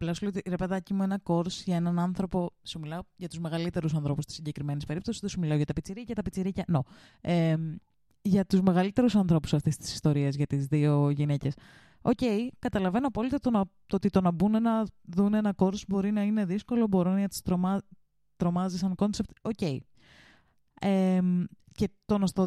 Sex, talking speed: female, 190 wpm